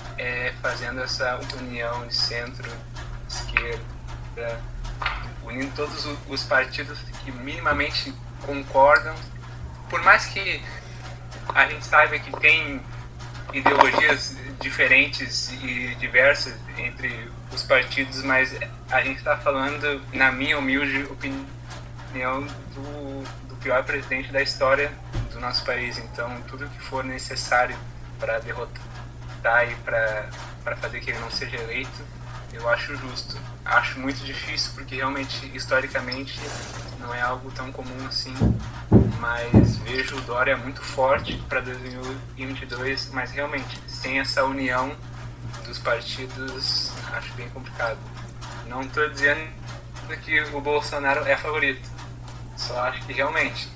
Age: 20-39